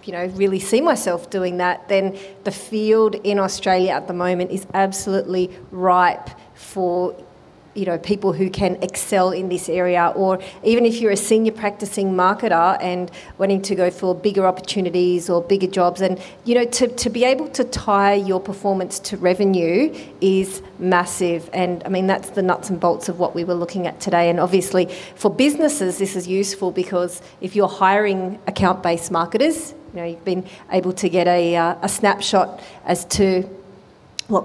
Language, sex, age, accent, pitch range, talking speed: English, female, 30-49, Australian, 180-200 Hz, 180 wpm